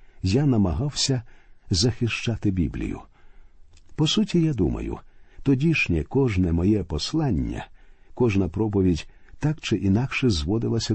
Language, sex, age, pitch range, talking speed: Ukrainian, male, 50-69, 95-125 Hz, 100 wpm